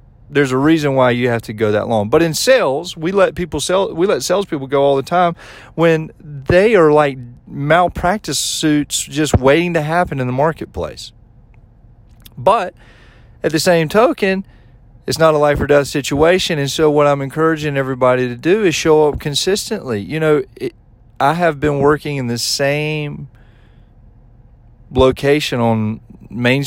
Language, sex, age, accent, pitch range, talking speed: English, male, 40-59, American, 120-150 Hz, 165 wpm